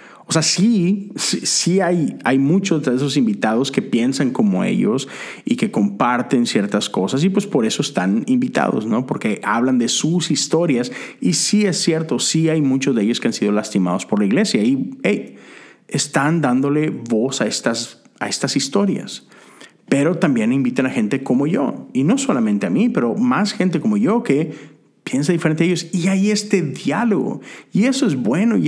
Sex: male